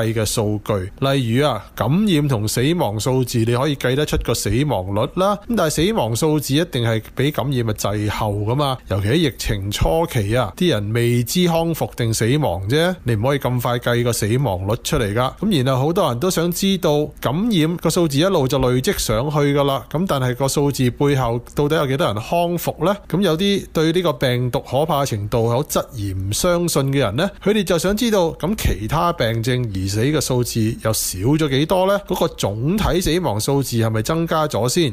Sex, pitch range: male, 115-160 Hz